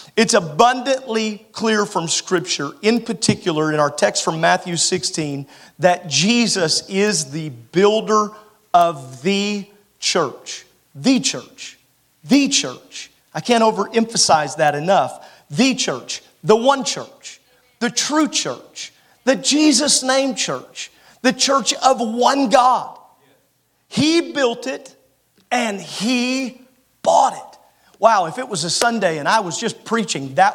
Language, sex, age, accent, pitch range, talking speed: English, male, 40-59, American, 180-245 Hz, 130 wpm